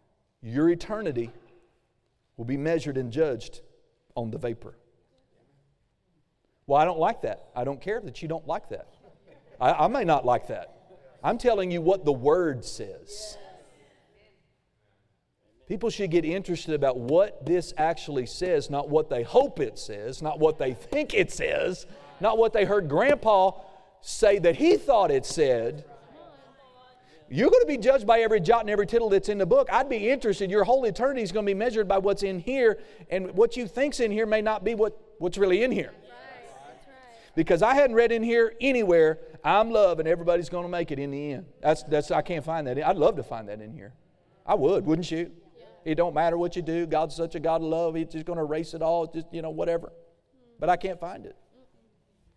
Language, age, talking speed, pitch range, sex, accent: English, 40-59, 200 wpm, 155-225 Hz, male, American